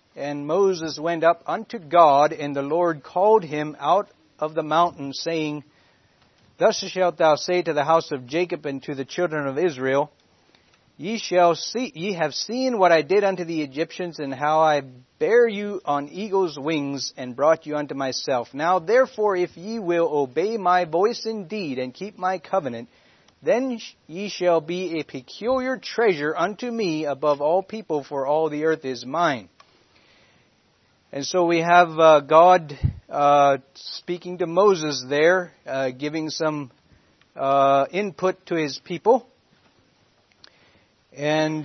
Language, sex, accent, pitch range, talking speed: English, male, American, 140-180 Hz, 155 wpm